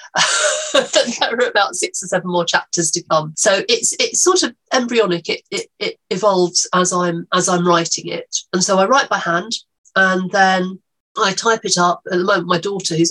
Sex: female